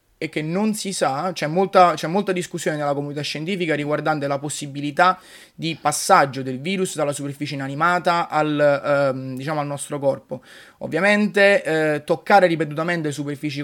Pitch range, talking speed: 145-180 Hz, 150 wpm